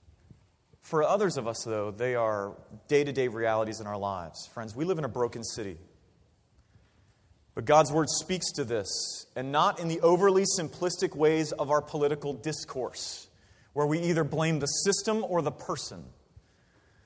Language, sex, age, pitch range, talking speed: English, male, 30-49, 115-160 Hz, 160 wpm